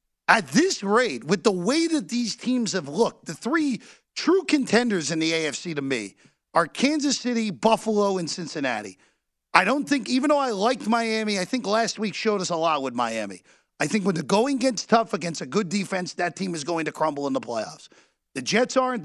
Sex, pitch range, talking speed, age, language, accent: male, 160-245 Hz, 210 wpm, 40-59, English, American